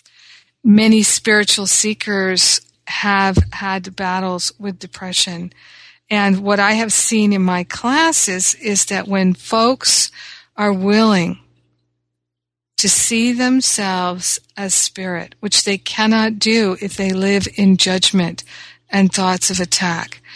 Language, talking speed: English, 120 wpm